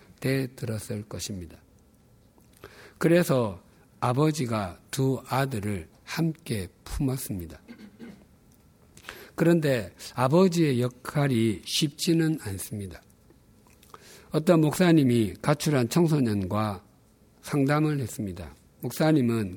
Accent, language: native, Korean